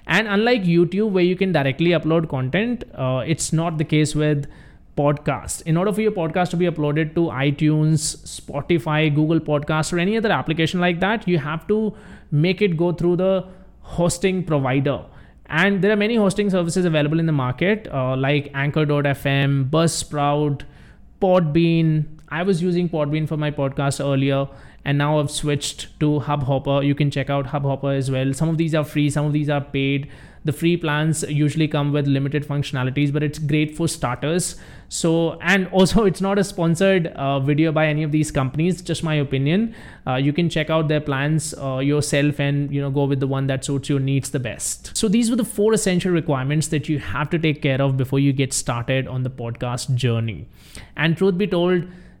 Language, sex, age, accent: English, male, 20-39, Indian